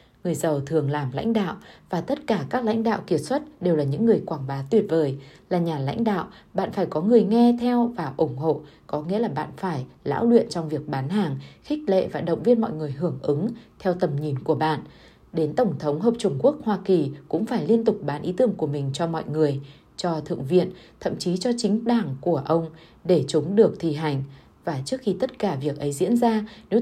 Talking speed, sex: 235 wpm, female